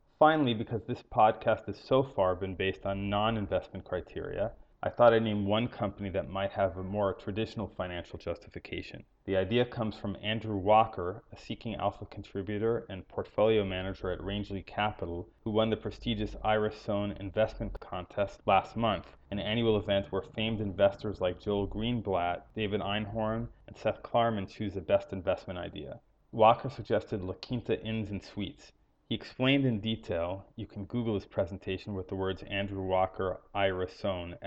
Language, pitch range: English, 95-110 Hz